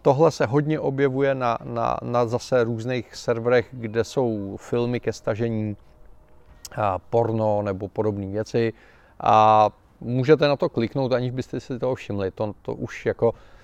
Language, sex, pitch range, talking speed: Czech, male, 110-125 Hz, 145 wpm